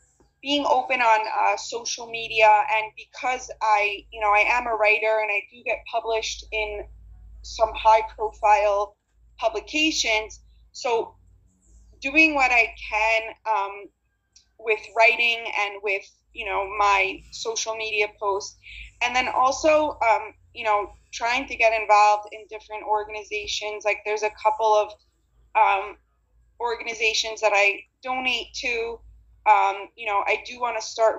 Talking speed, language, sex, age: 140 wpm, English, female, 20-39